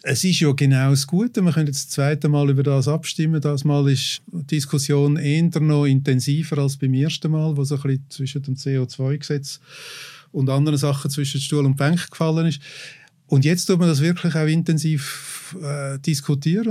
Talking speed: 190 wpm